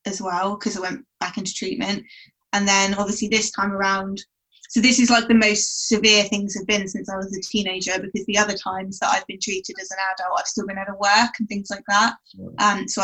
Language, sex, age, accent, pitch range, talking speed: English, female, 20-39, British, 190-215 Hz, 240 wpm